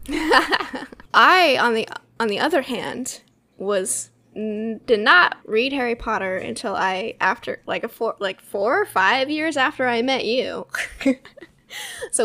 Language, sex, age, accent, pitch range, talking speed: English, female, 10-29, American, 215-315 Hz, 140 wpm